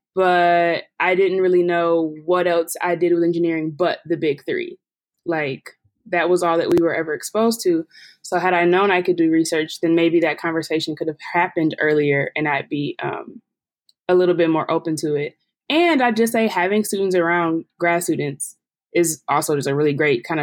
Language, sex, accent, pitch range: English, female, American, 165-200 Hz